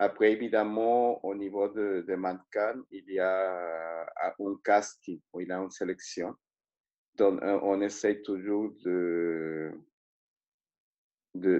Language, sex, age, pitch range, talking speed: French, male, 50-69, 90-100 Hz, 125 wpm